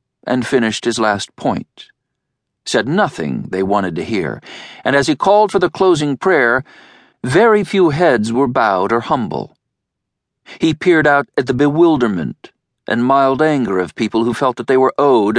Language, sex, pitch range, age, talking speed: English, male, 105-160 Hz, 50-69, 170 wpm